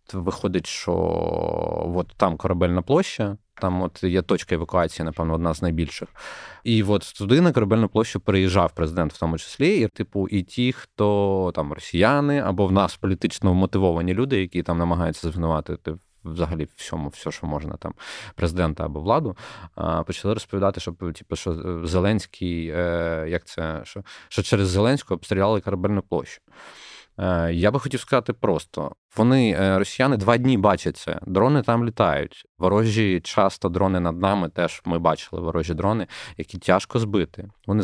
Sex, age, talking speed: male, 20-39, 150 wpm